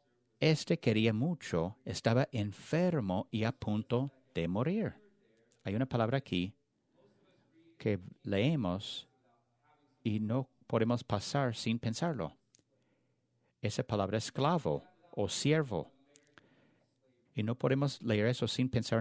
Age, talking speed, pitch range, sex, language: 50-69, 105 wpm, 105-140 Hz, male, English